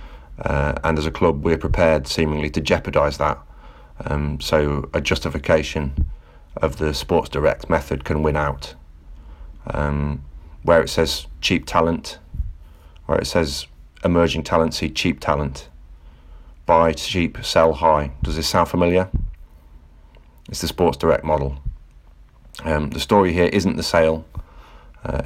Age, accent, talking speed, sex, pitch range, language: 40-59, British, 140 wpm, male, 70-80 Hz, English